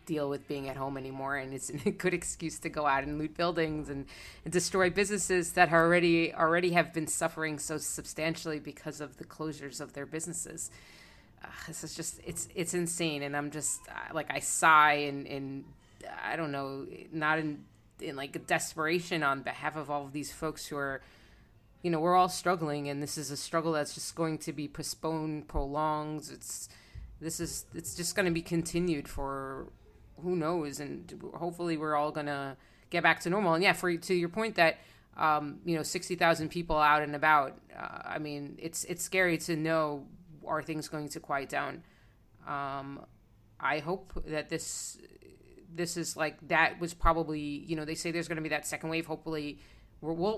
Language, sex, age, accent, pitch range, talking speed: English, female, 30-49, American, 145-170 Hz, 190 wpm